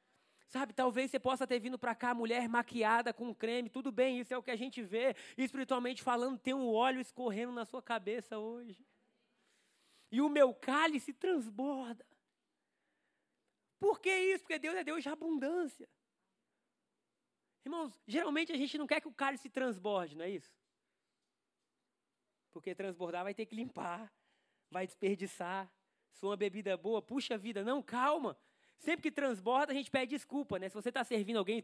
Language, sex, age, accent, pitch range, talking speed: Portuguese, male, 20-39, Brazilian, 220-285 Hz, 170 wpm